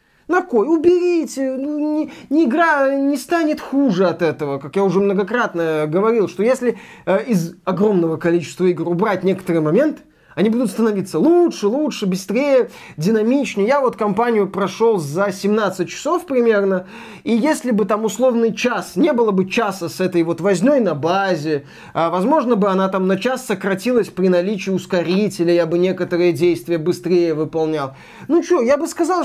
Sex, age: male, 20-39